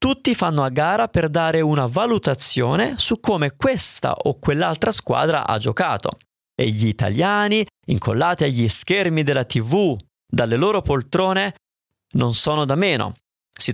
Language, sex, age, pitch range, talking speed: Italian, male, 30-49, 120-180 Hz, 140 wpm